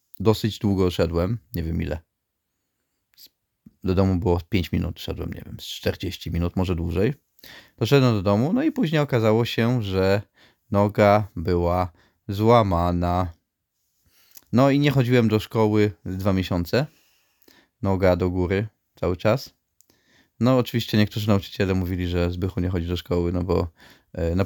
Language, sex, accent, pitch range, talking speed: Polish, male, native, 95-120 Hz, 140 wpm